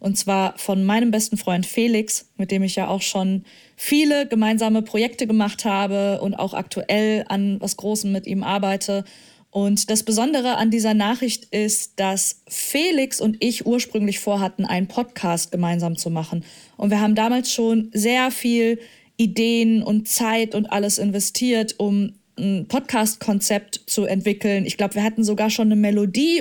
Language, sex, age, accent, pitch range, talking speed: German, female, 20-39, German, 200-245 Hz, 160 wpm